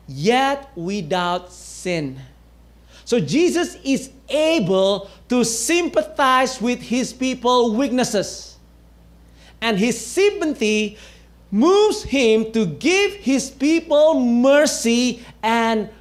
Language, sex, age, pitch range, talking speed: English, male, 40-59, 165-265 Hz, 90 wpm